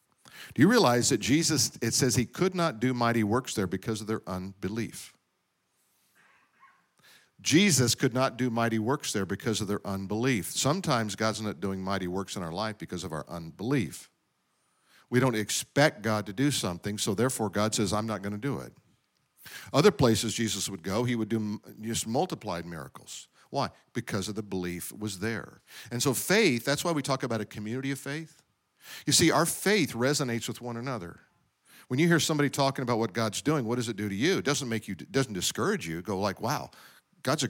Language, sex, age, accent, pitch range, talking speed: English, male, 50-69, American, 105-140 Hz, 200 wpm